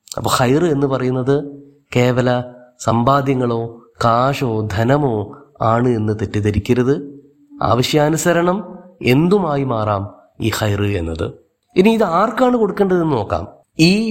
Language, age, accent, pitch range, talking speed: Malayalam, 30-49, native, 120-155 Hz, 100 wpm